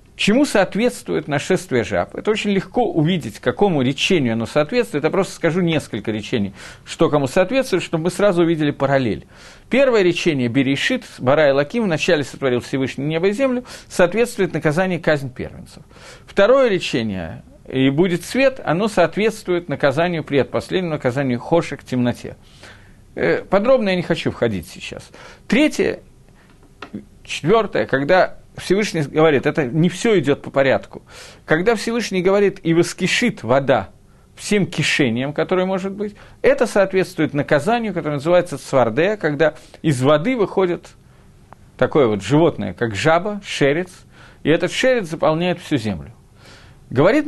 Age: 50-69